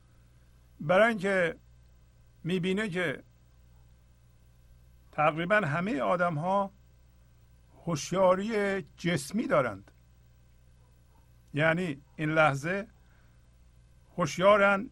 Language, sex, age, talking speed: Persian, male, 50-69, 50 wpm